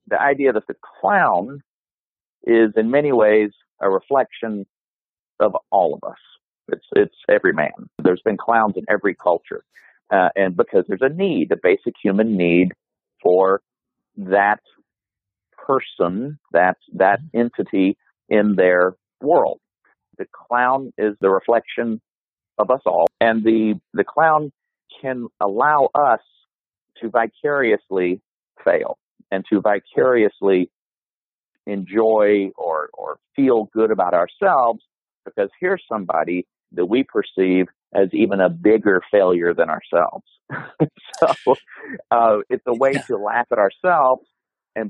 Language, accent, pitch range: English, American, 95-130 Hz